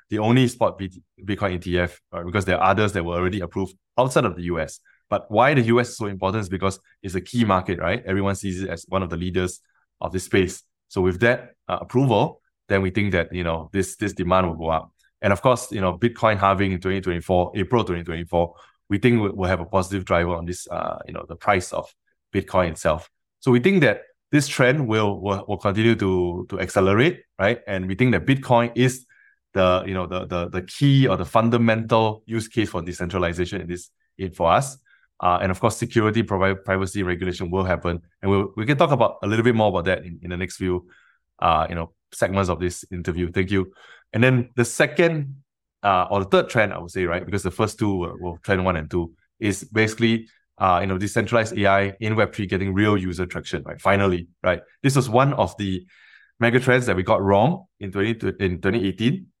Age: 20-39